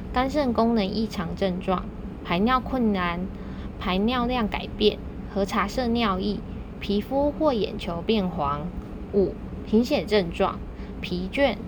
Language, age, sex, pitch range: Chinese, 20-39, female, 190-235 Hz